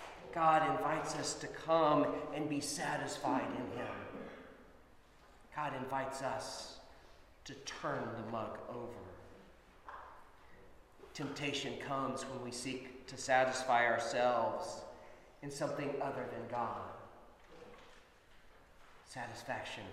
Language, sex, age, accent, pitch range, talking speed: English, male, 40-59, American, 135-165 Hz, 95 wpm